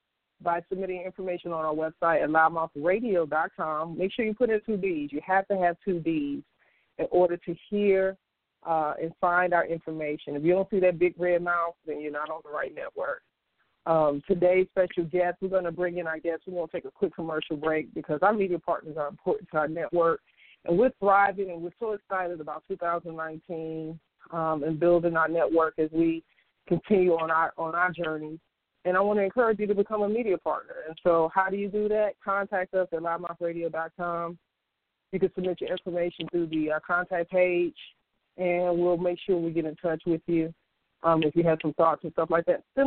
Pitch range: 165-190 Hz